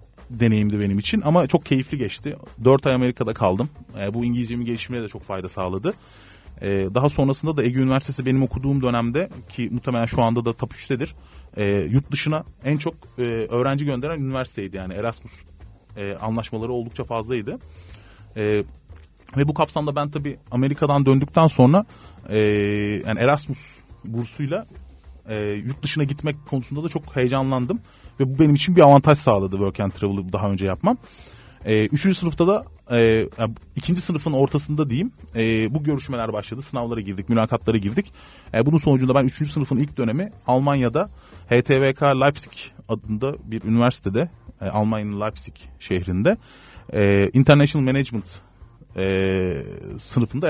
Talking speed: 135 wpm